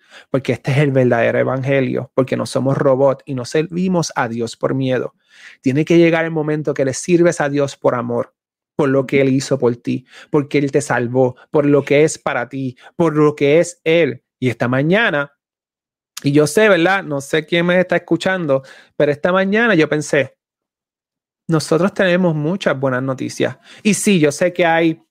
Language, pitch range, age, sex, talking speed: Spanish, 140-180 Hz, 30-49, male, 190 wpm